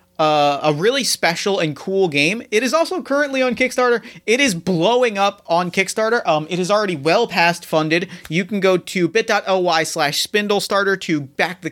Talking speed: 185 wpm